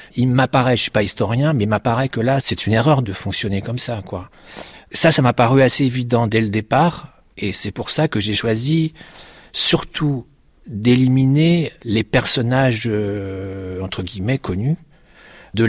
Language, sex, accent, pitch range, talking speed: French, male, French, 100-130 Hz, 170 wpm